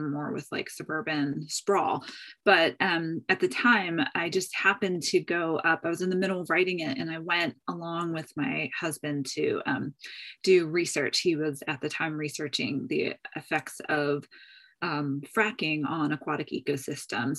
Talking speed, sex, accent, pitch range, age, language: 170 wpm, female, American, 155-190 Hz, 20-39, English